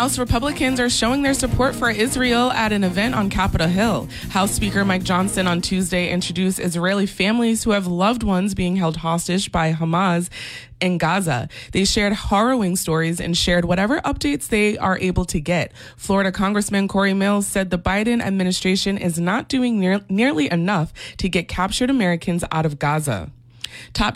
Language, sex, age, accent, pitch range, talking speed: English, female, 20-39, American, 180-220 Hz, 170 wpm